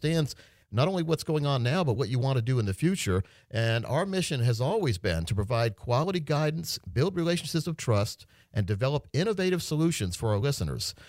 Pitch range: 105-150 Hz